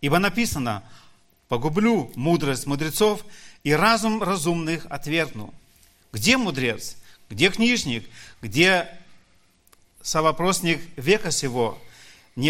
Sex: male